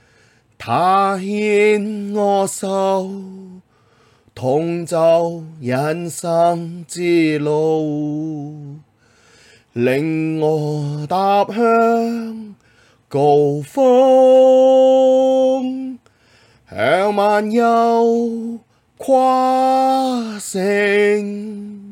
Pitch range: 120-195 Hz